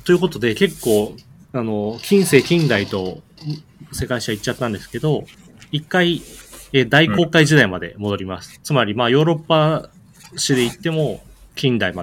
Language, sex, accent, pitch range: Japanese, male, native, 105-150 Hz